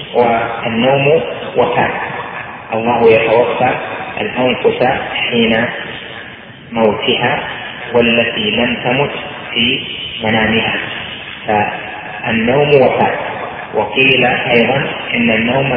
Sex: male